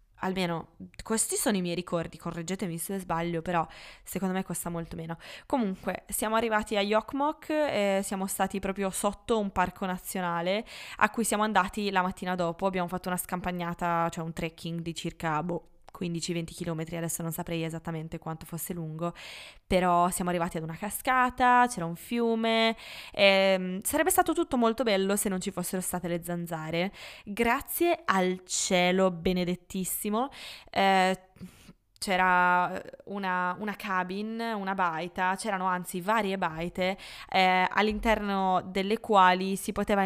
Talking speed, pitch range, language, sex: 145 wpm, 175-210 Hz, Italian, female